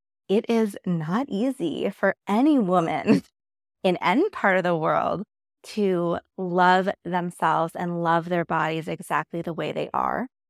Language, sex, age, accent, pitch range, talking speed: English, female, 20-39, American, 165-220 Hz, 145 wpm